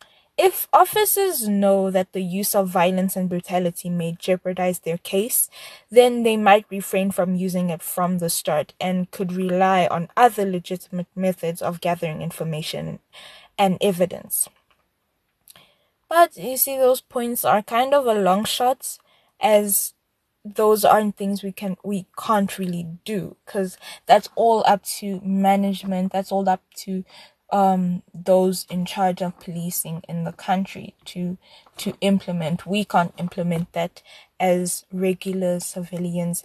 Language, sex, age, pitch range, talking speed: English, female, 10-29, 180-205 Hz, 140 wpm